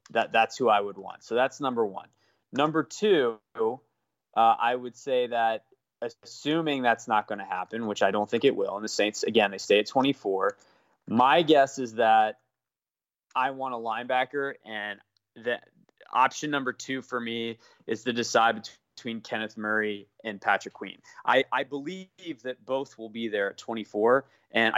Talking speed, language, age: 175 wpm, English, 20-39